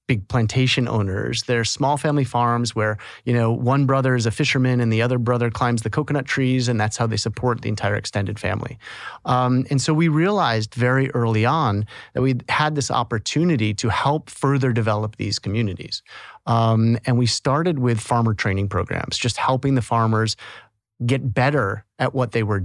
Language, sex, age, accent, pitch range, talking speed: English, male, 30-49, American, 110-130 Hz, 185 wpm